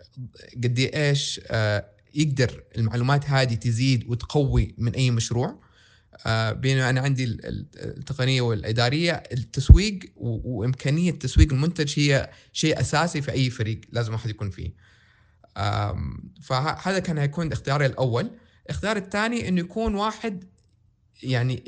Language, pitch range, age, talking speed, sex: Arabic, 115-150 Hz, 20-39, 110 wpm, male